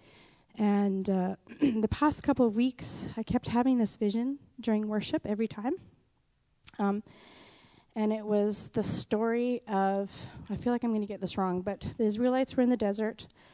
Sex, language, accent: female, English, American